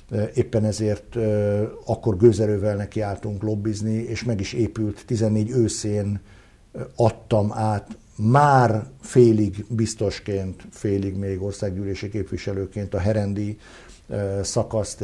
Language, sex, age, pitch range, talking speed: Hungarian, male, 60-79, 95-110 Hz, 95 wpm